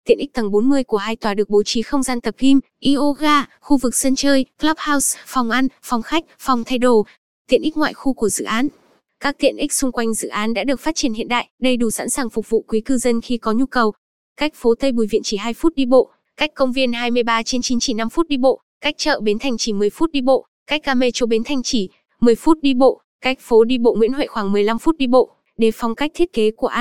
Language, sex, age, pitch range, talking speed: Vietnamese, female, 10-29, 230-270 Hz, 255 wpm